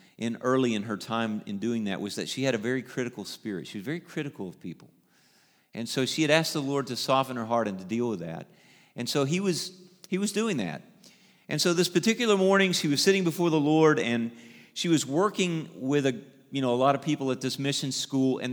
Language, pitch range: English, 125-165 Hz